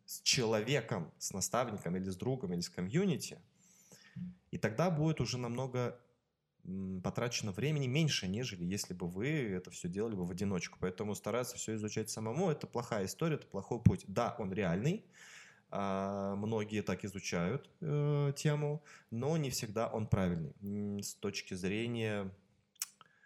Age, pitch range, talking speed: 20-39, 100-145 Hz, 140 wpm